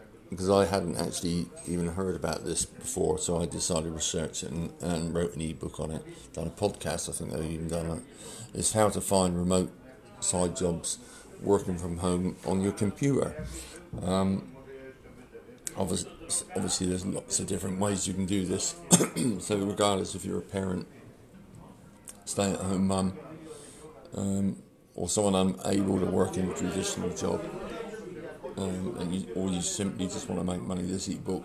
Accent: British